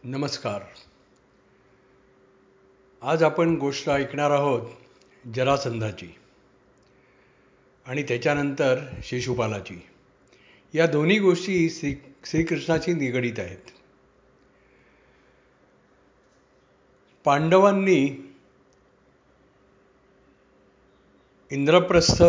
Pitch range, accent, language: 125-165 Hz, native, Marathi